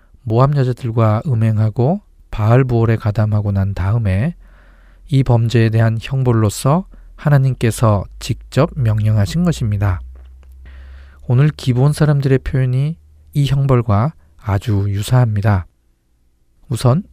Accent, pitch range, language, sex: native, 105-135 Hz, Korean, male